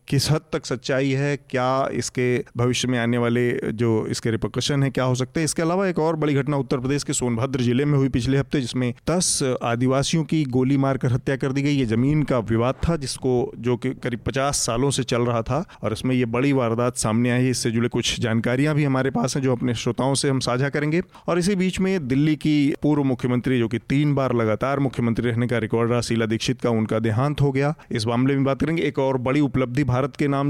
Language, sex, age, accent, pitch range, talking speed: Hindi, male, 30-49, native, 120-145 Hz, 230 wpm